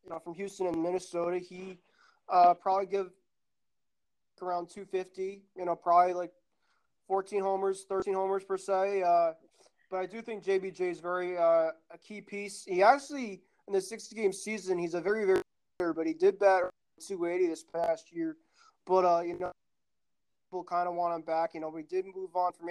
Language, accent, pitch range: English, American, 170-190 Hz